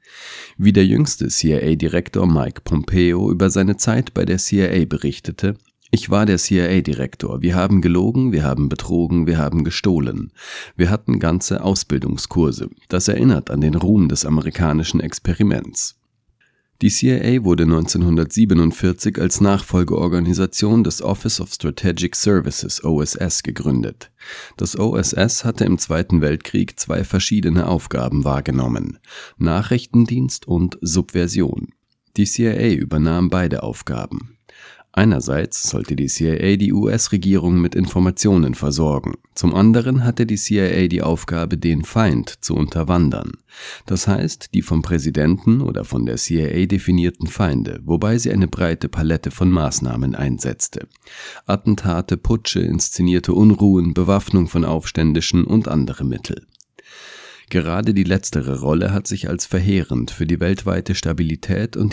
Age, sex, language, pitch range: 40-59, male, German, 80-100 Hz